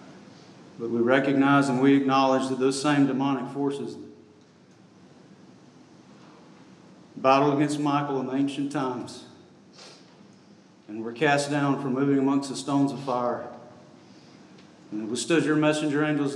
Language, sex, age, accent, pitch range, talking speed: English, male, 40-59, American, 120-145 Hz, 125 wpm